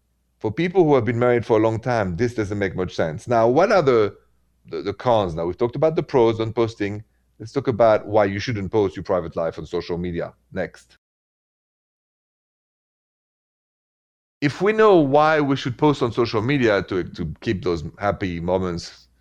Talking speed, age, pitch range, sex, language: 185 wpm, 30-49, 85-125 Hz, male, English